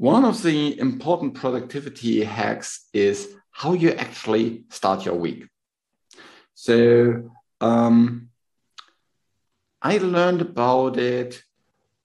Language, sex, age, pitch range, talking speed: English, male, 50-69, 105-125 Hz, 95 wpm